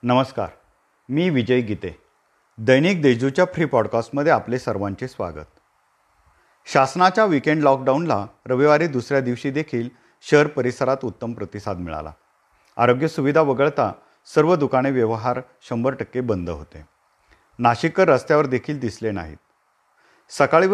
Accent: native